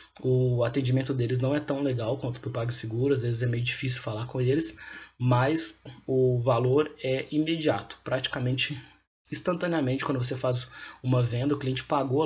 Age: 20-39